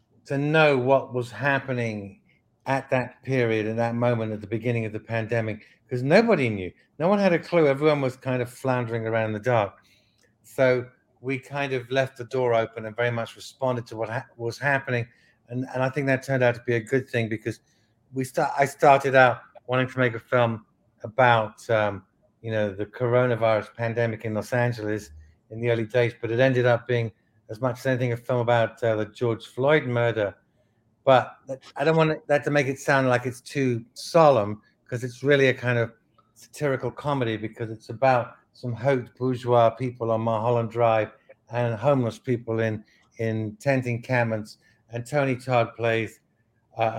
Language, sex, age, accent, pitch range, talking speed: English, male, 50-69, British, 115-130 Hz, 190 wpm